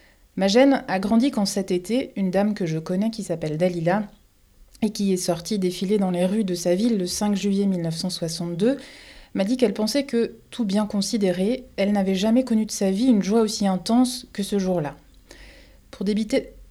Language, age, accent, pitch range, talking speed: French, 30-49, French, 180-220 Hz, 195 wpm